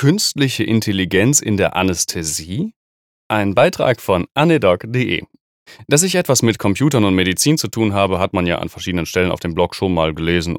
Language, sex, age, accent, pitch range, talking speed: German, male, 30-49, German, 90-115 Hz, 175 wpm